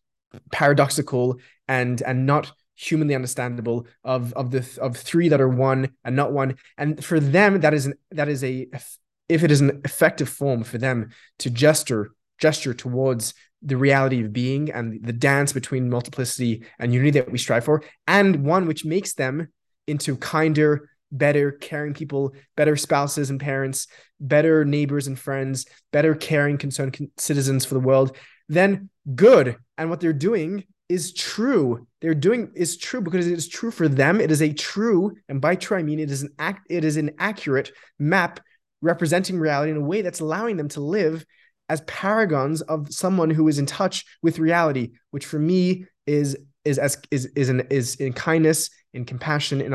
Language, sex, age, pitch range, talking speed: English, male, 20-39, 130-160 Hz, 180 wpm